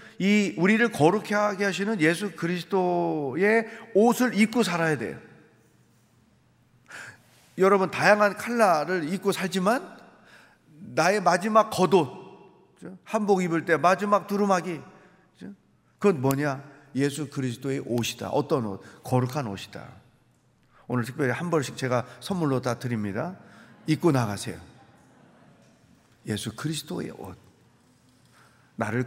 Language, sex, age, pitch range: Korean, male, 40-59, 140-205 Hz